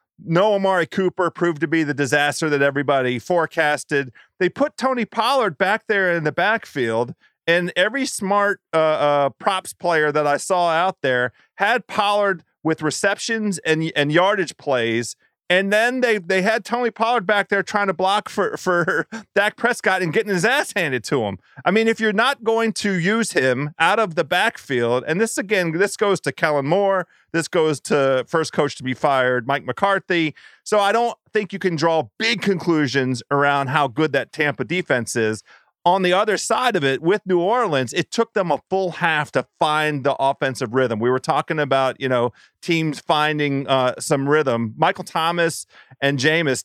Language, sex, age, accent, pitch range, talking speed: English, male, 40-59, American, 140-190 Hz, 185 wpm